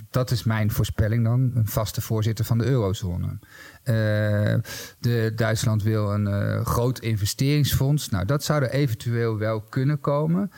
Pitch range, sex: 105-125 Hz, male